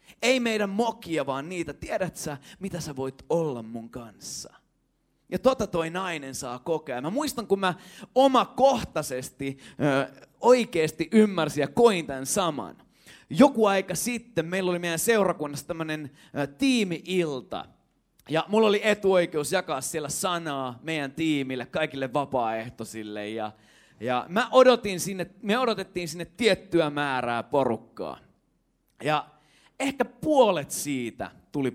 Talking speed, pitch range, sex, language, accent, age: 125 wpm, 130-190 Hz, male, Finnish, native, 30-49